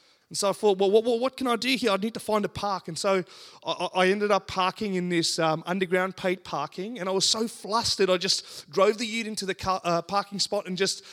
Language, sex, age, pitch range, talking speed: English, male, 30-49, 165-210 Hz, 260 wpm